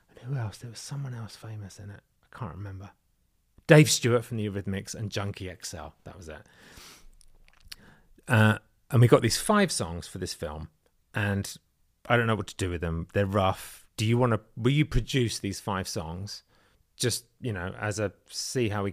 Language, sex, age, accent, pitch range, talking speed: English, male, 30-49, British, 95-120 Hz, 195 wpm